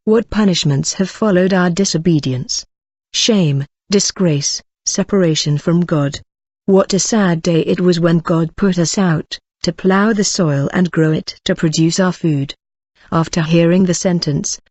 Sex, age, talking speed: female, 40-59, 150 wpm